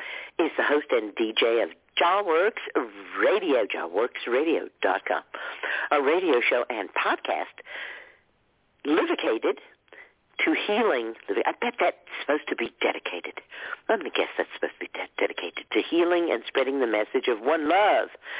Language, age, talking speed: English, 50-69, 135 wpm